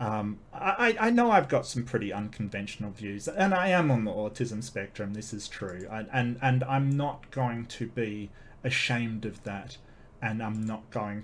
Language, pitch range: English, 105-135 Hz